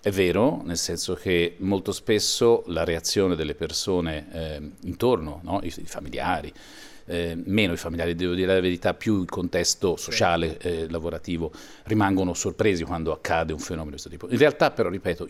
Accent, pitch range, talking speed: native, 85-105 Hz, 175 wpm